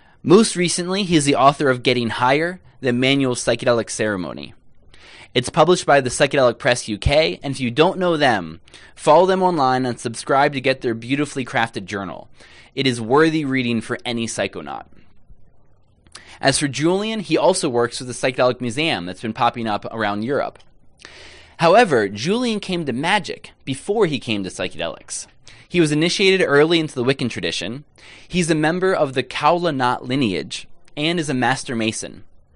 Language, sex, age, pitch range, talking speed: English, male, 20-39, 115-160 Hz, 165 wpm